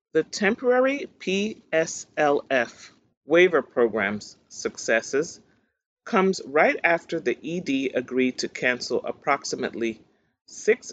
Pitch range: 125-180 Hz